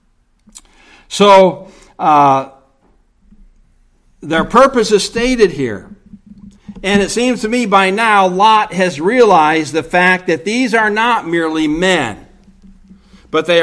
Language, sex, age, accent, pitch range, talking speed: English, male, 60-79, American, 160-210 Hz, 120 wpm